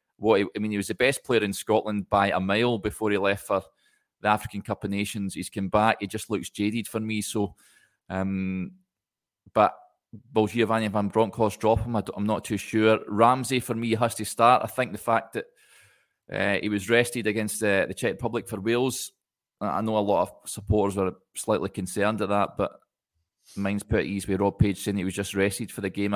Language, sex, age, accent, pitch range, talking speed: English, male, 20-39, British, 100-115 Hz, 215 wpm